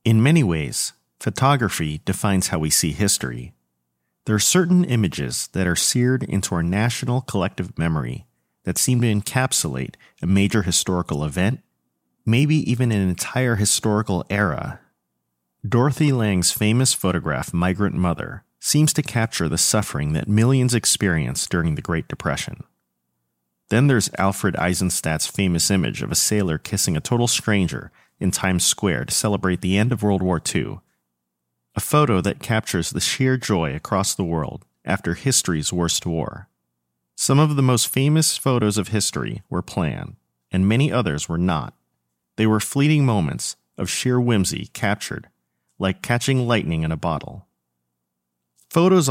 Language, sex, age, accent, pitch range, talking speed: English, male, 40-59, American, 75-120 Hz, 150 wpm